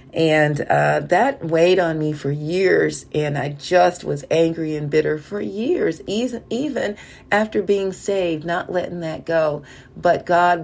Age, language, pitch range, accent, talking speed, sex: 40-59, English, 155-195 Hz, American, 150 wpm, female